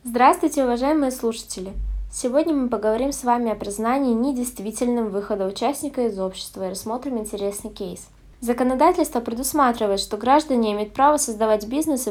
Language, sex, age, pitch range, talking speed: Russian, female, 20-39, 205-260 Hz, 140 wpm